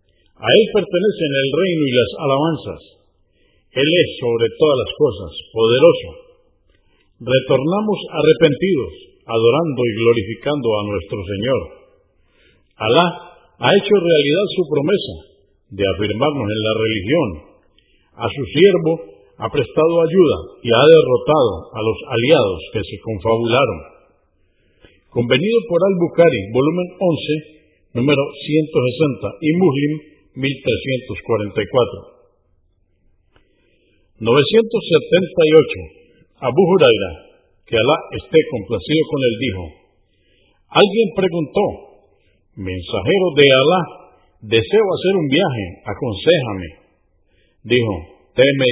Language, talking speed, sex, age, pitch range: Spanish, 100 wpm, male, 50-69, 115-190 Hz